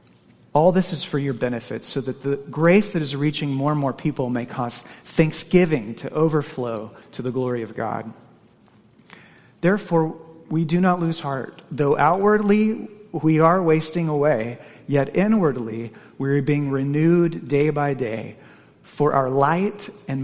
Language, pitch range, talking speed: English, 125-155 Hz, 155 wpm